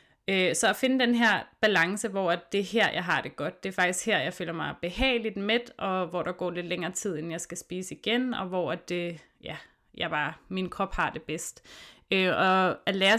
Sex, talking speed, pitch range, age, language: female, 225 wpm, 175-205 Hz, 30-49, Danish